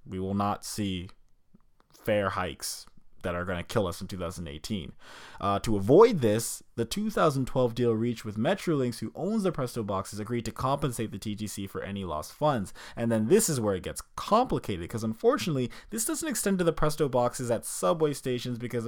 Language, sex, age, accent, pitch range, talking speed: English, male, 20-39, American, 115-170 Hz, 190 wpm